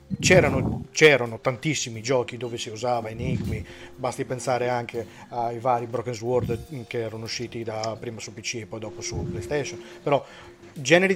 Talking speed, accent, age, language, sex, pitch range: 155 wpm, native, 30-49, Italian, male, 120-155 Hz